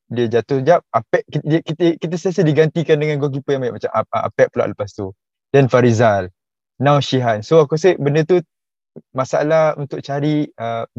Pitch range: 120-165 Hz